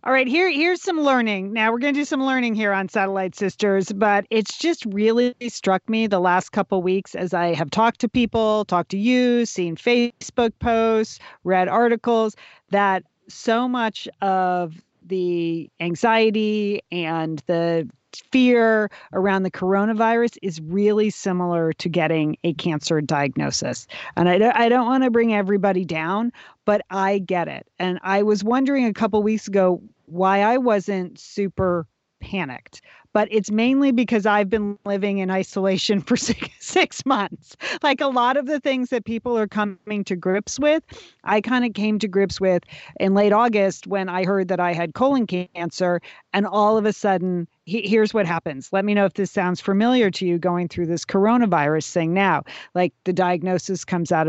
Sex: female